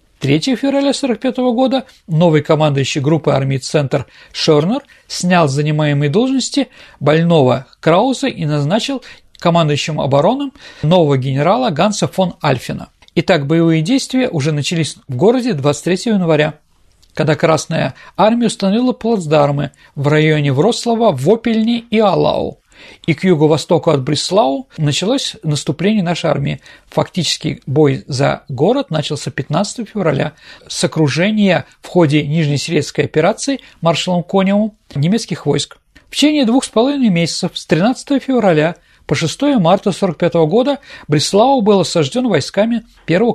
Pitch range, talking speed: 150-230 Hz, 125 wpm